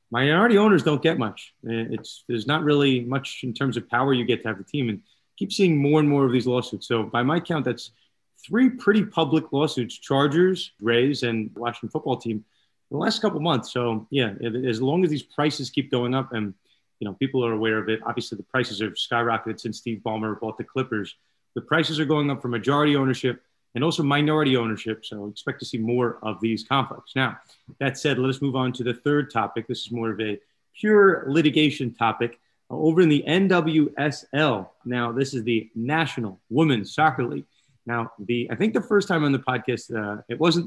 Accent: American